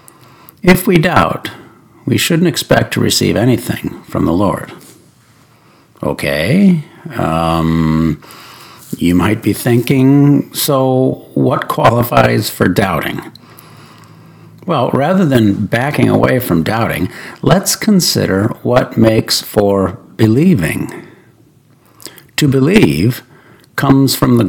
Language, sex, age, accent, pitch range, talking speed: English, male, 60-79, American, 100-140 Hz, 100 wpm